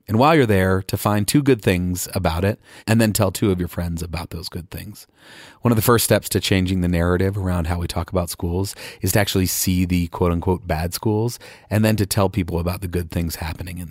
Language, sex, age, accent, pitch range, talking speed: English, male, 30-49, American, 90-110 Hz, 240 wpm